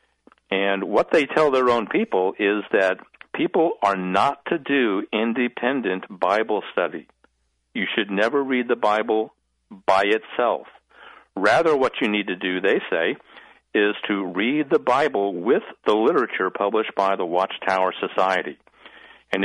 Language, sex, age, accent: English, male, 50-69, American